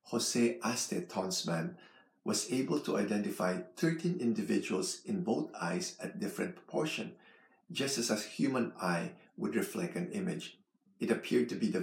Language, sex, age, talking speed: English, male, 50-69, 145 wpm